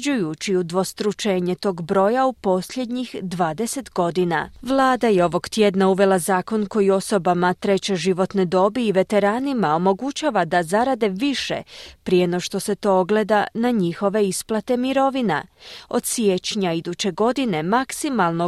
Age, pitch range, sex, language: 30-49, 180-245 Hz, female, Croatian